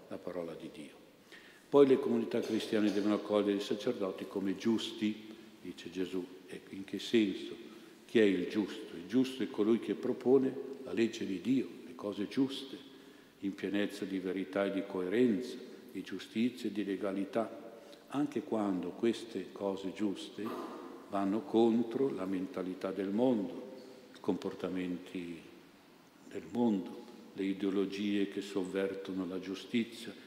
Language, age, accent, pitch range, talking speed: Italian, 50-69, native, 95-110 Hz, 140 wpm